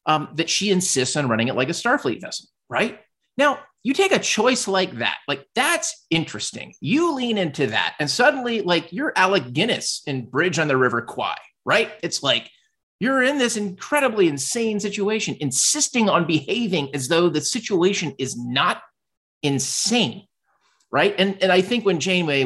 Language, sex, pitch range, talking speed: English, male, 120-200 Hz, 170 wpm